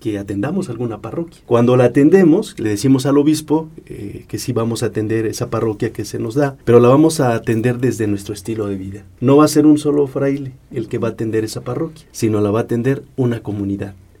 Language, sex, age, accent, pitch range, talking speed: English, male, 40-59, Mexican, 105-140 Hz, 225 wpm